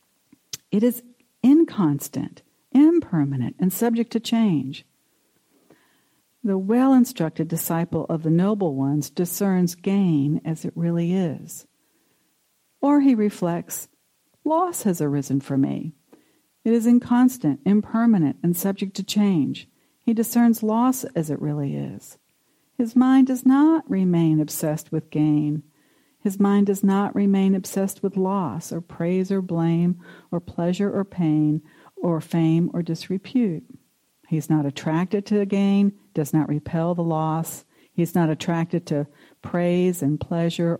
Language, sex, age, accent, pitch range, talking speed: English, female, 60-79, American, 155-205 Hz, 135 wpm